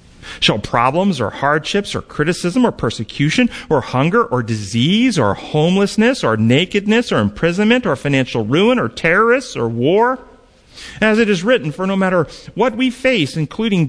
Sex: male